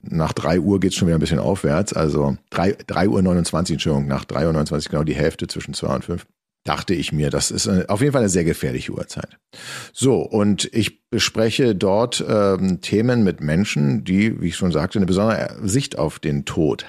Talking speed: 210 wpm